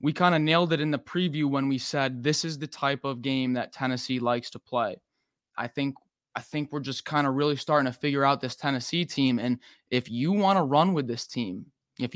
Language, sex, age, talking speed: English, male, 20-39, 235 wpm